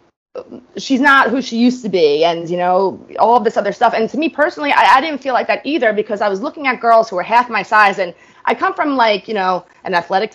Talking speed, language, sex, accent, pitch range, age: 265 wpm, English, female, American, 180-235 Hz, 20-39